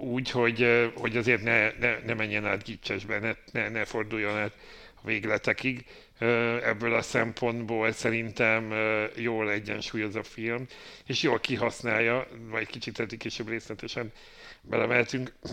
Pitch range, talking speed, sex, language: 105-120 Hz, 135 wpm, male, Hungarian